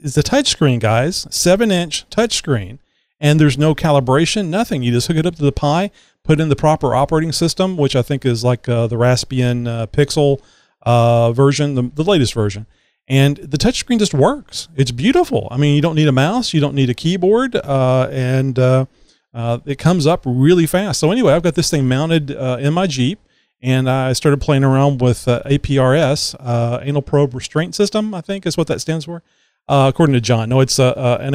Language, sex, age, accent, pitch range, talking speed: English, male, 40-59, American, 125-155 Hz, 210 wpm